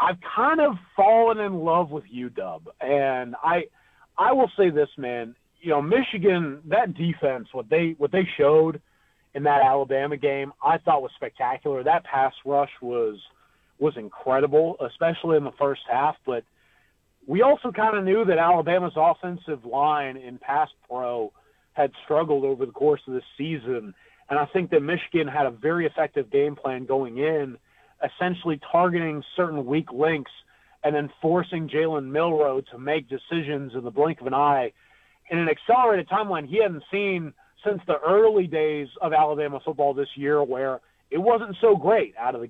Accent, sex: American, male